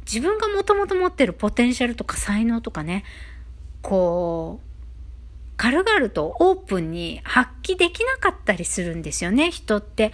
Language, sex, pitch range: Japanese, female, 175-255 Hz